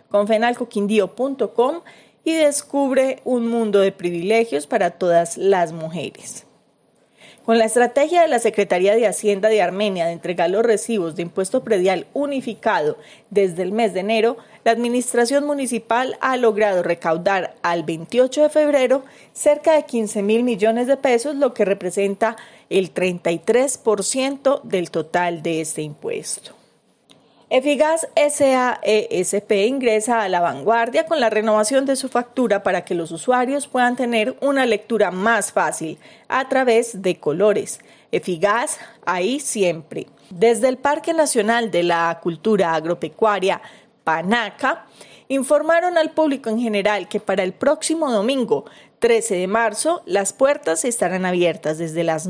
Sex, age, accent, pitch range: female, 30-49, Colombian, 195-265 Hz